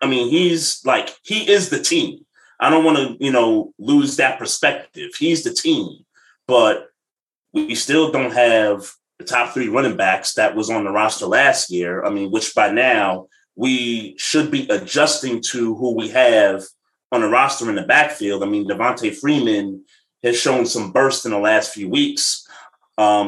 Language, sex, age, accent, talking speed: English, male, 30-49, American, 180 wpm